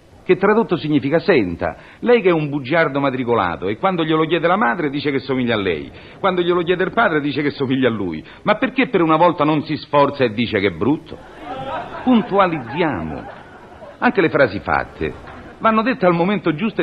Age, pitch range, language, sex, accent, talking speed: 50-69, 135-205 Hz, Italian, male, native, 195 wpm